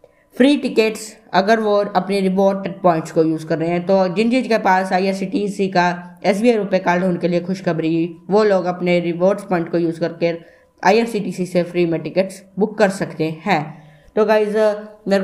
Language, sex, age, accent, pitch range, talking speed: Hindi, female, 20-39, native, 175-210 Hz, 180 wpm